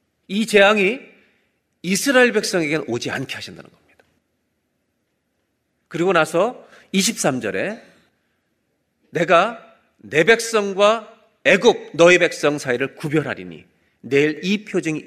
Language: Korean